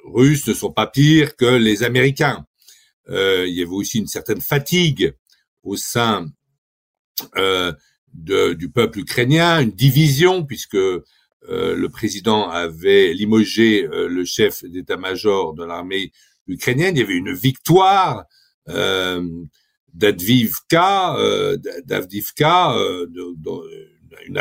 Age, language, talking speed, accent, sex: 50-69, French, 115 wpm, French, male